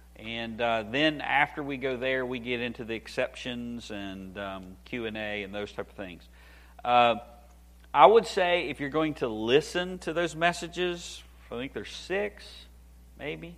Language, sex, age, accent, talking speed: English, male, 40-59, American, 165 wpm